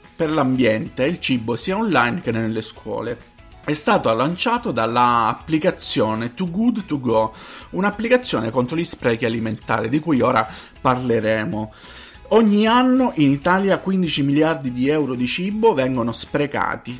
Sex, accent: male, native